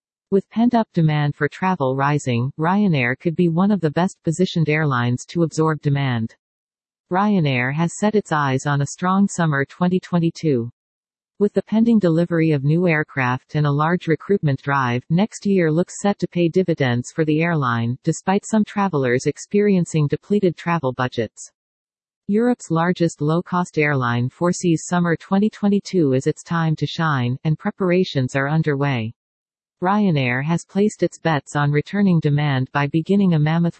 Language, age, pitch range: English, 50-69, 145-190 Hz